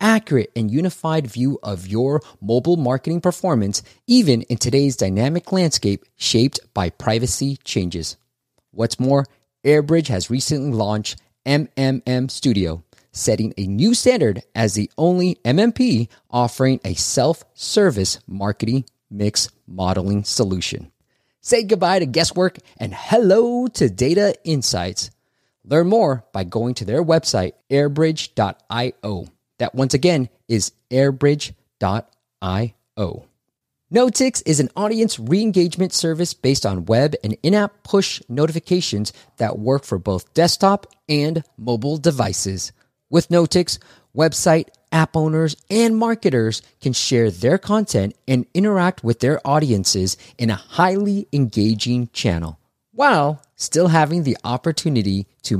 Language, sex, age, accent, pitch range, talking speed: English, male, 30-49, American, 110-165 Hz, 120 wpm